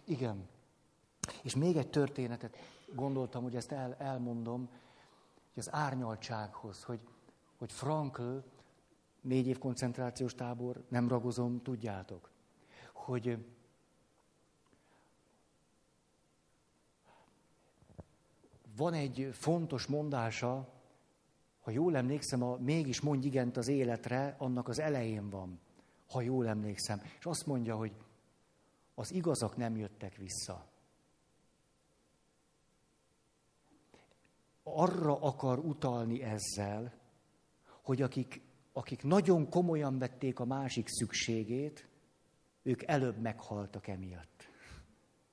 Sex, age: male, 50-69